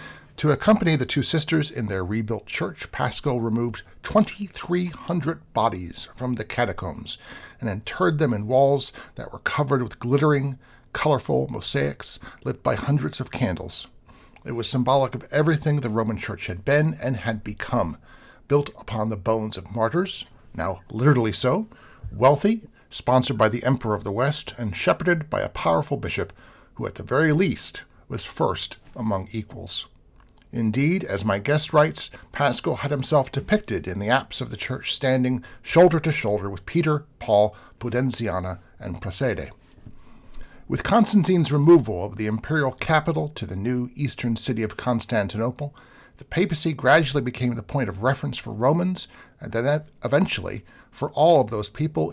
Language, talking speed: English, 155 wpm